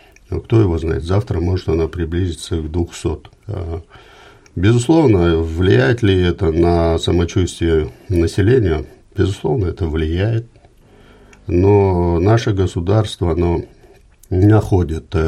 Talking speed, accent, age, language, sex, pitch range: 100 wpm, native, 50-69, Russian, male, 85-100 Hz